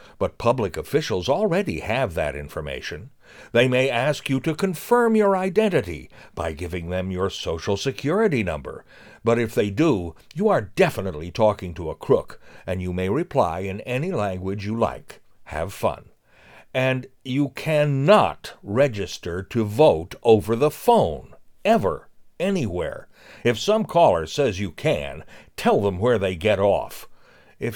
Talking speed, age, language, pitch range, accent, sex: 145 wpm, 60-79, English, 100-150 Hz, American, male